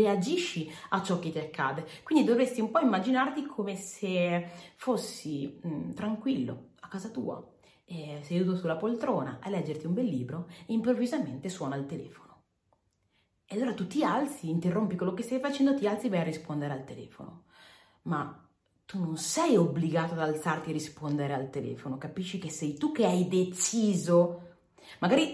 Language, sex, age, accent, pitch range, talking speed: Italian, female, 30-49, native, 155-225 Hz, 165 wpm